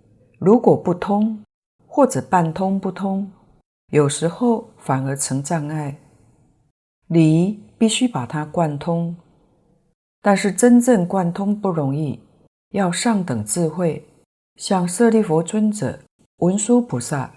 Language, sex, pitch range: Chinese, female, 150-205 Hz